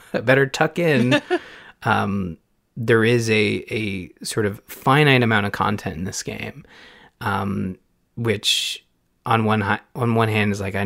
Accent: American